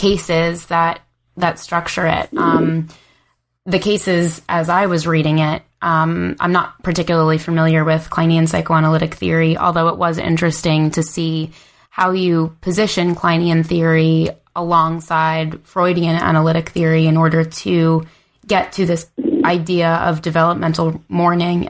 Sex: female